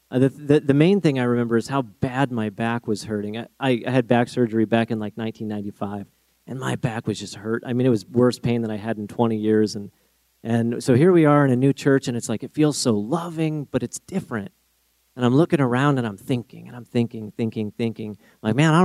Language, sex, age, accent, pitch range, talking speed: English, male, 40-59, American, 110-150 Hz, 250 wpm